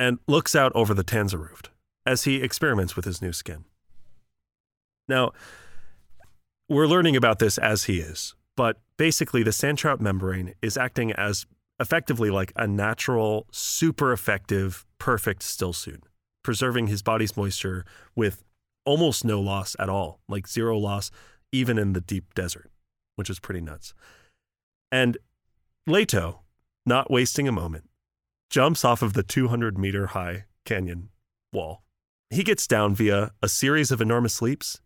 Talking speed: 145 wpm